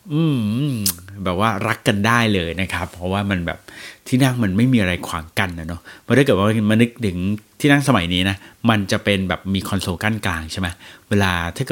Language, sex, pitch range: Thai, male, 100-135 Hz